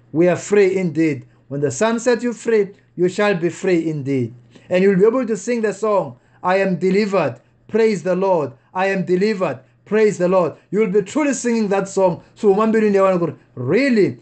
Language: English